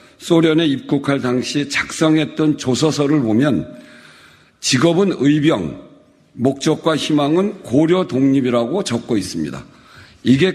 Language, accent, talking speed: English, Korean, 85 wpm